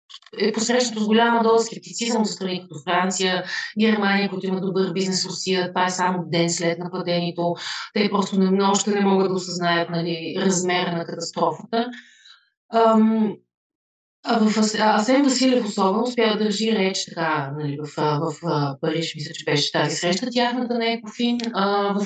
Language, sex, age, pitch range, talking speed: Bulgarian, female, 30-49, 175-220 Hz, 165 wpm